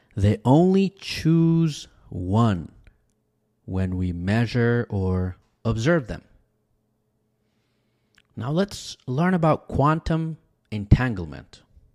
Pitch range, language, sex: 100-135 Hz, English, male